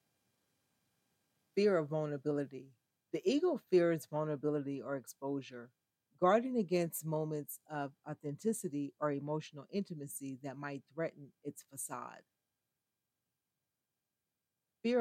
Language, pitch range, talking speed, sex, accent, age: English, 140-165 Hz, 90 wpm, female, American, 40-59